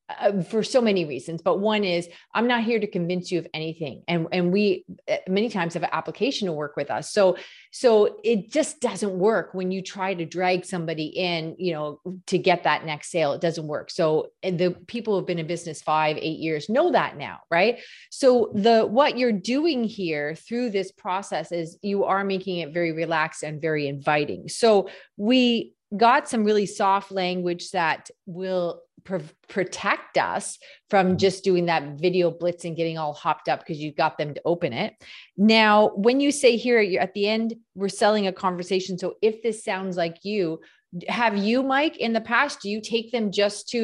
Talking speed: 195 wpm